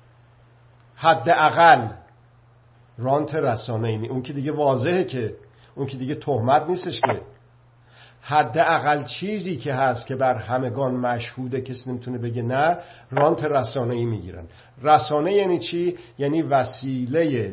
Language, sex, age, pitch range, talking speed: Persian, male, 50-69, 120-150 Hz, 125 wpm